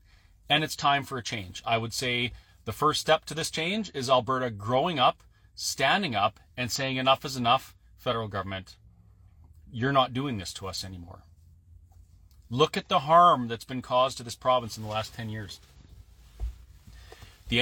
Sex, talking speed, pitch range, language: male, 175 wpm, 100-155 Hz, English